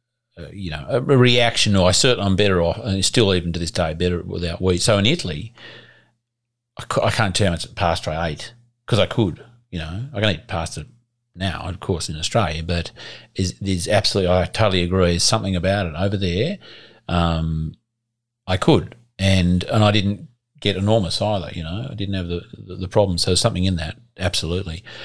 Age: 40-59